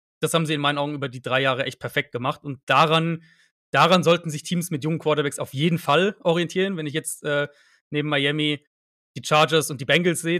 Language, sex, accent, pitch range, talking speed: German, male, German, 135-160 Hz, 220 wpm